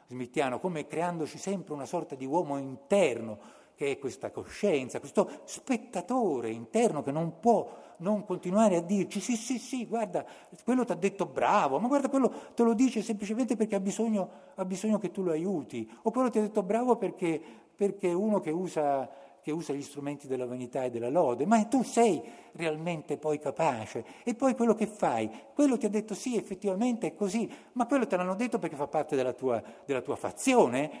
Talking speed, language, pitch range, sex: 195 wpm, Italian, 135-215 Hz, male